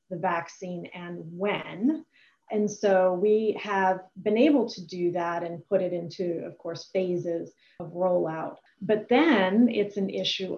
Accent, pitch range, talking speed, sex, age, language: American, 175-210 Hz, 155 wpm, female, 30-49, English